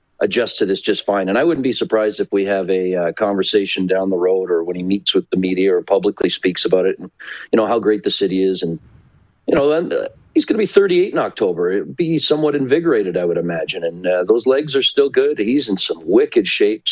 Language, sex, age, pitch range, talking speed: English, male, 40-59, 95-150 Hz, 245 wpm